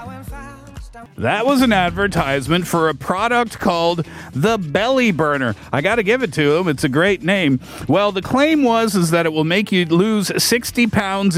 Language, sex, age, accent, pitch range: Korean, male, 40-59, American, 135-185 Hz